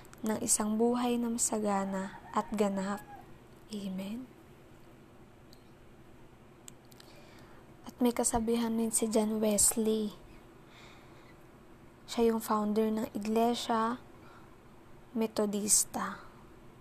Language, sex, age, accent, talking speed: Filipino, female, 20-39, native, 75 wpm